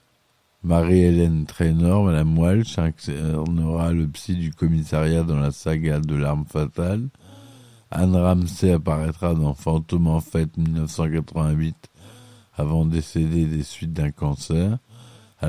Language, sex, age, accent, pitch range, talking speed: French, male, 50-69, French, 80-100 Hz, 120 wpm